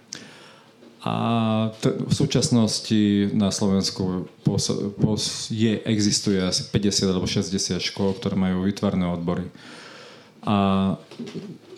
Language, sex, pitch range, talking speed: Slovak, male, 95-110 Hz, 85 wpm